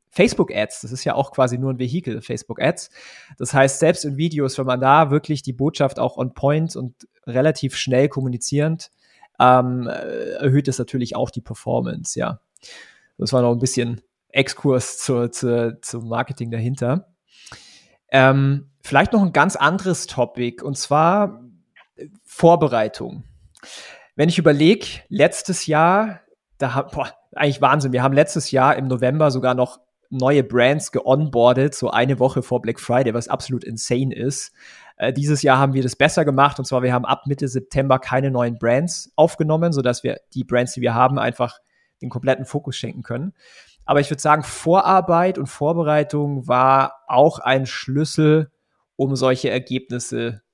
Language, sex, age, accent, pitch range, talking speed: German, male, 30-49, German, 125-150 Hz, 160 wpm